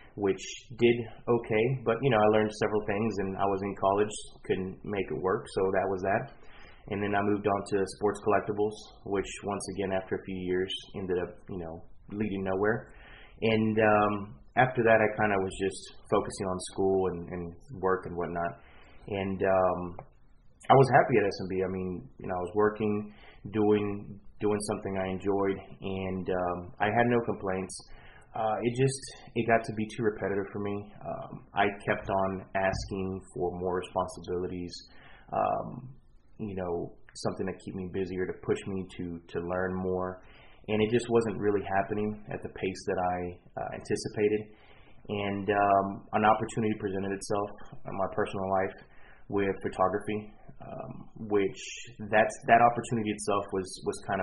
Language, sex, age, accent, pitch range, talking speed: English, male, 20-39, American, 95-110 Hz, 170 wpm